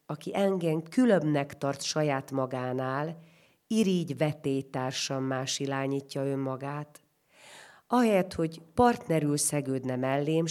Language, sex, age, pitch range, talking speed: Hungarian, female, 40-59, 130-155 Hz, 85 wpm